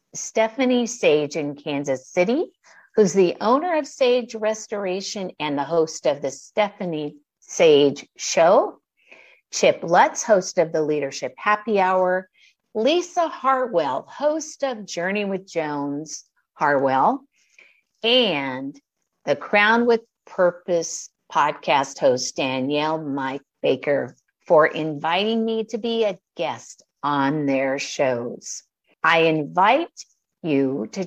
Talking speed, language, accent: 115 wpm, English, American